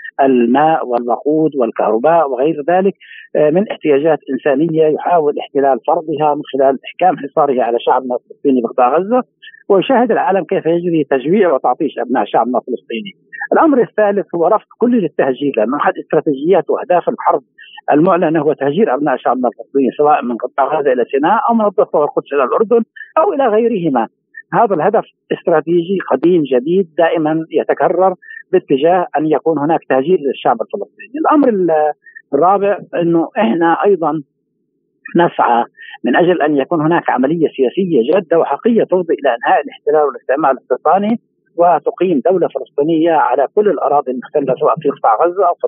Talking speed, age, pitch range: 145 wpm, 50-69, 145-220 Hz